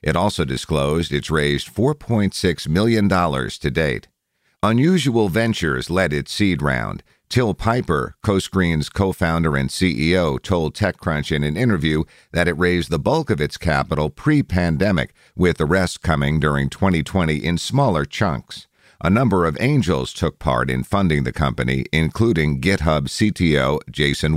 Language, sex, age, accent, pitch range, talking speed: English, male, 50-69, American, 75-105 Hz, 145 wpm